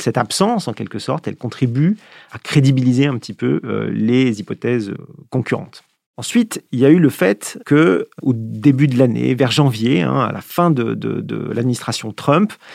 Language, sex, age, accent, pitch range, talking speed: French, male, 40-59, French, 115-145 Hz, 175 wpm